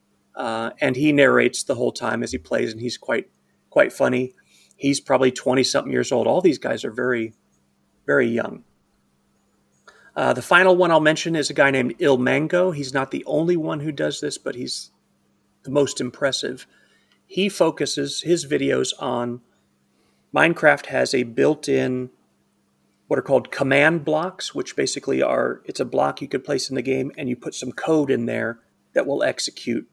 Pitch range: 115-155 Hz